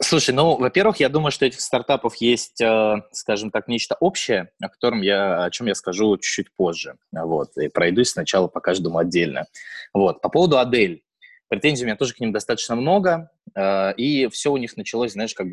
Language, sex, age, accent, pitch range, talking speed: Russian, male, 20-39, native, 100-130 Hz, 195 wpm